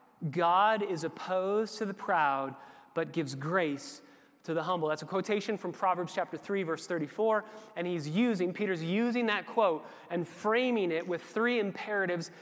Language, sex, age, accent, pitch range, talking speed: English, male, 30-49, American, 175-220 Hz, 165 wpm